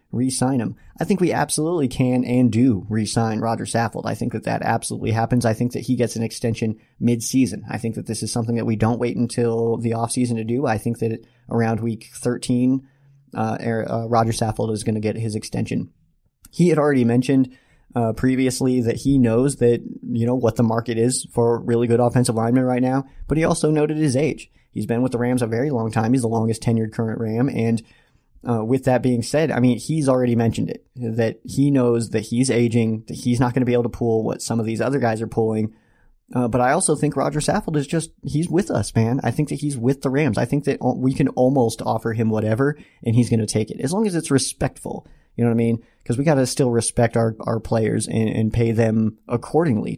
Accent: American